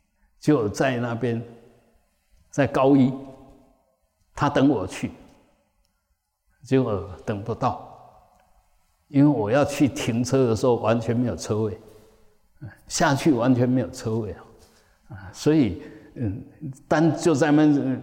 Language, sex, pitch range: Chinese, male, 110-135 Hz